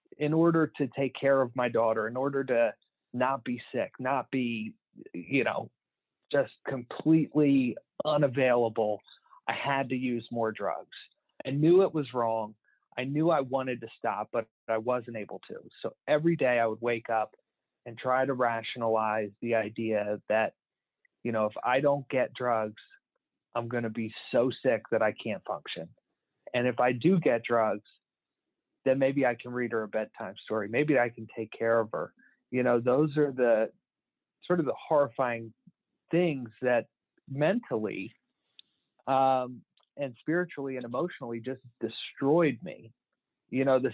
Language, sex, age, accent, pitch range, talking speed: English, male, 30-49, American, 115-140 Hz, 165 wpm